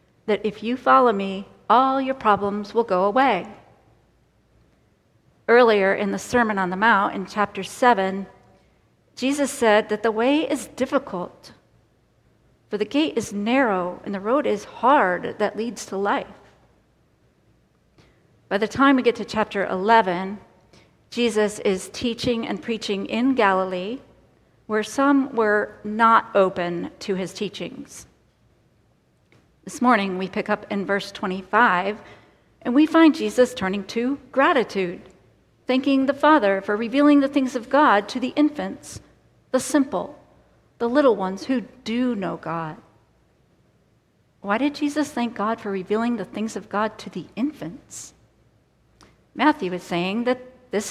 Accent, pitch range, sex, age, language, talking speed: American, 200-255 Hz, female, 50-69, English, 140 wpm